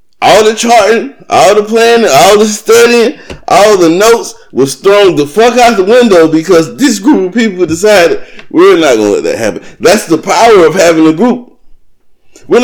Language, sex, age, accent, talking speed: English, male, 30-49, American, 190 wpm